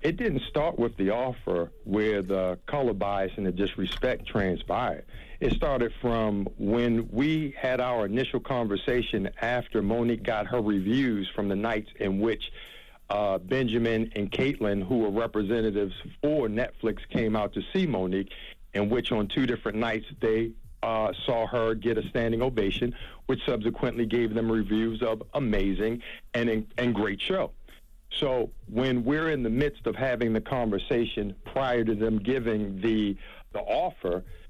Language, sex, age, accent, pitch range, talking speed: English, male, 50-69, American, 110-130 Hz, 155 wpm